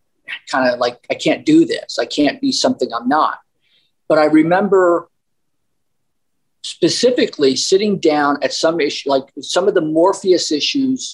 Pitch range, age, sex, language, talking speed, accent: 145-190 Hz, 50-69, male, English, 150 wpm, American